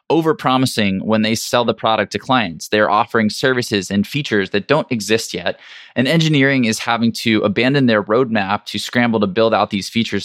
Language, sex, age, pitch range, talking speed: English, male, 20-39, 105-135 Hz, 185 wpm